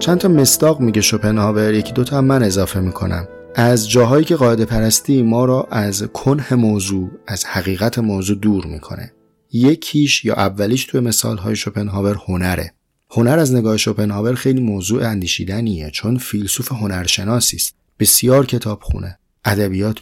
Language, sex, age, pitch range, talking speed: Persian, male, 30-49, 95-120 Hz, 140 wpm